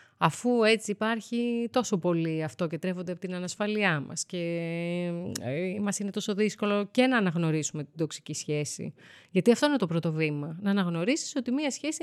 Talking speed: 170 wpm